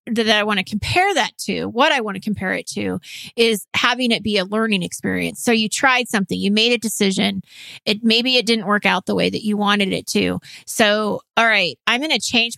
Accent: American